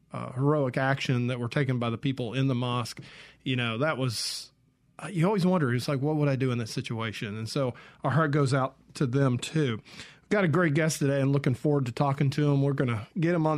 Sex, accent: male, American